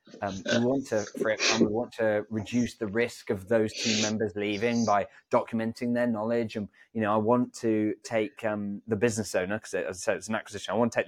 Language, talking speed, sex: English, 225 wpm, male